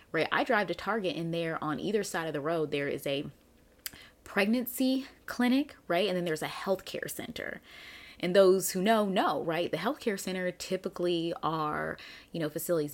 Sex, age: female, 20-39